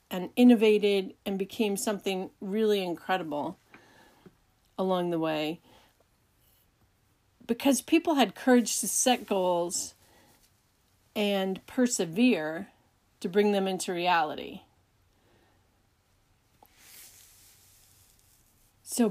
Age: 40-59